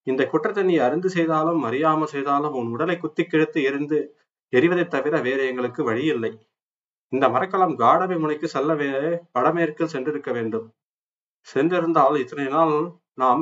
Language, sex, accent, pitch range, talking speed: Tamil, male, native, 135-165 Hz, 135 wpm